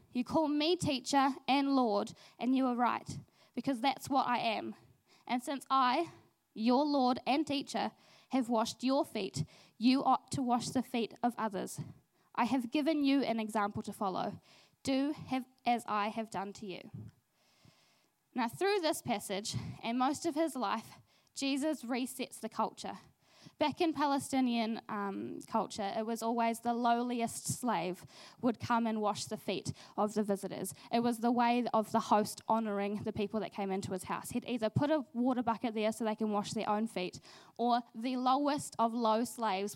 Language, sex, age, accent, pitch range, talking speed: English, female, 10-29, Australian, 210-255 Hz, 180 wpm